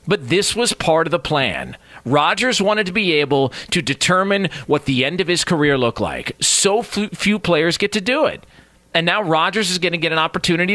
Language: English